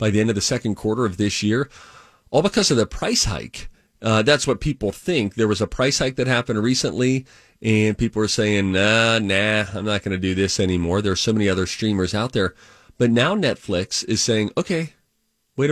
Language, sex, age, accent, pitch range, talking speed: English, male, 30-49, American, 100-130 Hz, 220 wpm